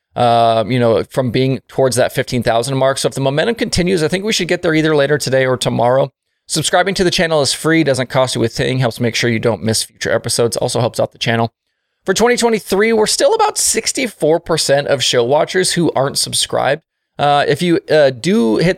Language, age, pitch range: English, 20-39, 120-165 Hz